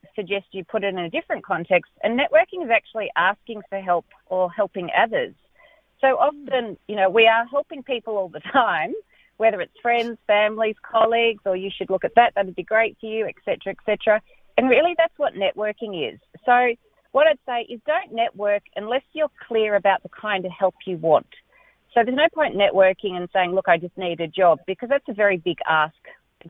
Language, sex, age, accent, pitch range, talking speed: English, female, 30-49, Australian, 175-235 Hz, 210 wpm